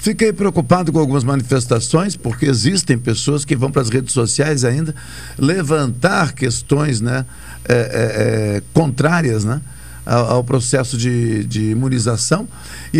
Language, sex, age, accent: Portuguese, male, 60-79, Brazilian